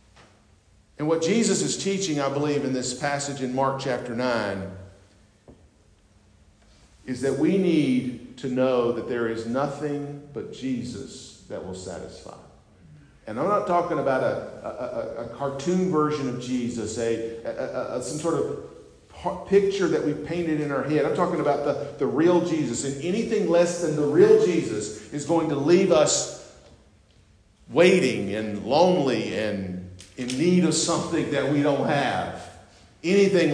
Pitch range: 120-160 Hz